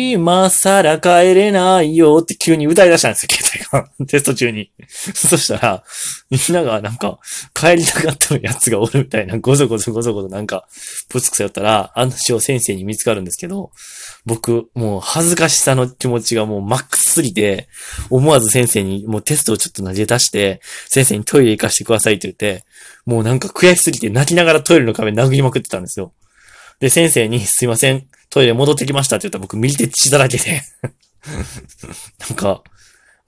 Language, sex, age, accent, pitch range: Japanese, male, 20-39, native, 105-155 Hz